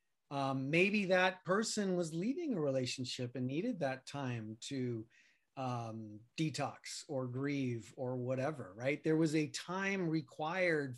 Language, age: English, 30-49